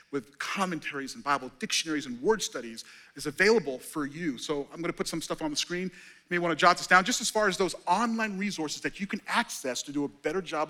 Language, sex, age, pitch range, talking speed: English, male, 40-59, 140-180 Hz, 250 wpm